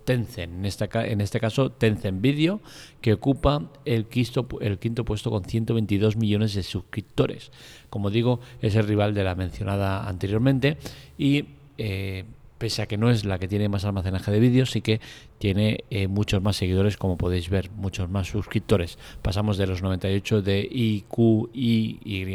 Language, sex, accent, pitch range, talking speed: Spanish, male, Spanish, 100-115 Hz, 160 wpm